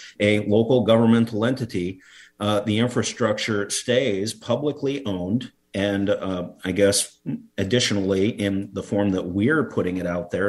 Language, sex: English, male